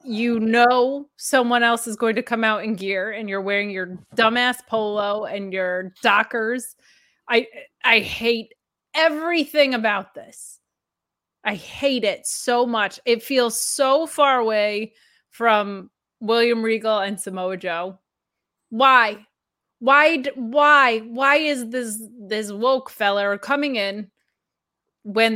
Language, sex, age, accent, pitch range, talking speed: English, female, 20-39, American, 220-305 Hz, 130 wpm